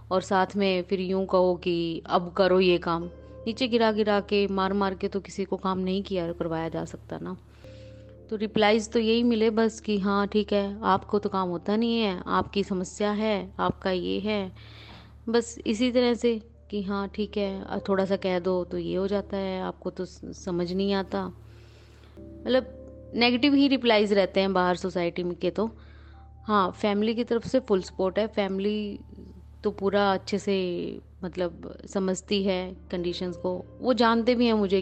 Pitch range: 175-205 Hz